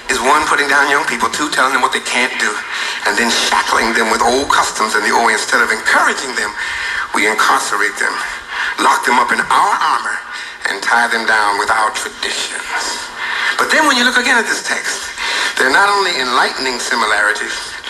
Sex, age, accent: male, 60-79, American